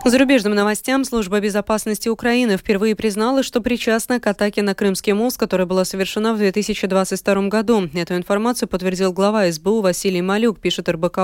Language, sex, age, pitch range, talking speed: Russian, female, 20-39, 180-220 Hz, 155 wpm